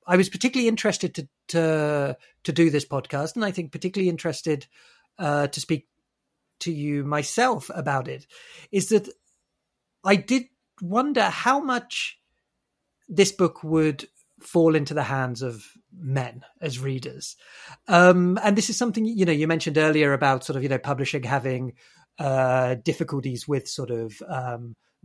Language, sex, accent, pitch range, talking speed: English, male, British, 145-190 Hz, 155 wpm